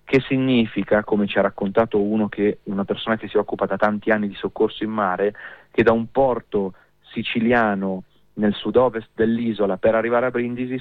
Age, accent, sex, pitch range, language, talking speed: 30-49, native, male, 105-125 Hz, Italian, 185 wpm